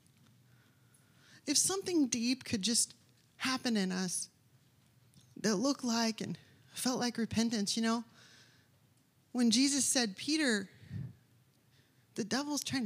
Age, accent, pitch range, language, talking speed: 20-39, American, 140-230 Hz, English, 110 wpm